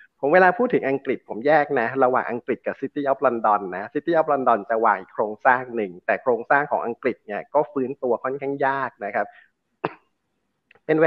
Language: Thai